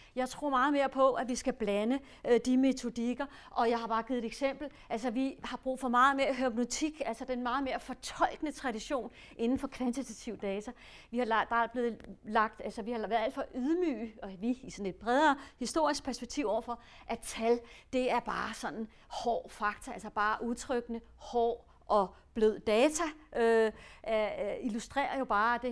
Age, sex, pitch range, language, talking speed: 40-59, female, 210-255 Hz, English, 185 wpm